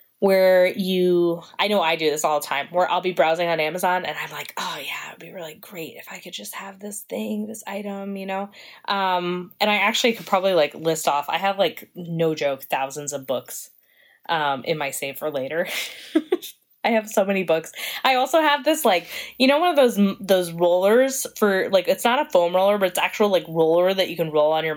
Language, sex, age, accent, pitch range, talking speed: English, female, 20-39, American, 165-230 Hz, 230 wpm